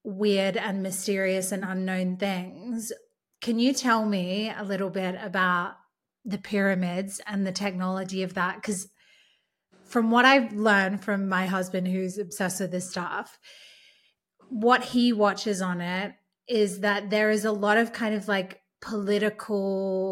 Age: 20-39